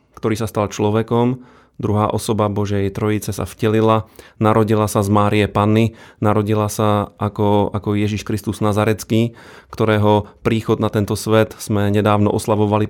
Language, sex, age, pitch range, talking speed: Slovak, male, 30-49, 105-115 Hz, 140 wpm